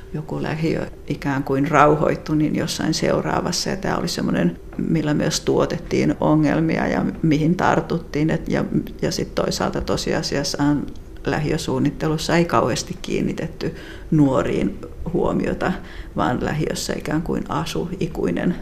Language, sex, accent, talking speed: Finnish, female, native, 120 wpm